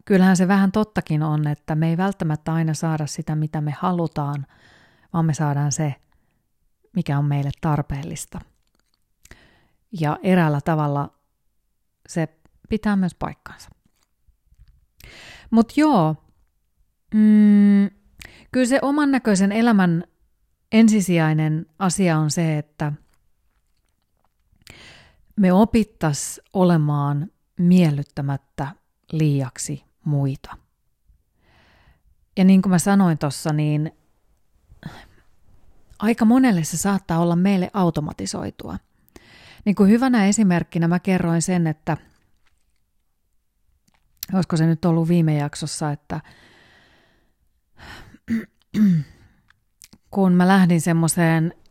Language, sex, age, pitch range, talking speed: Finnish, female, 30-49, 145-190 Hz, 95 wpm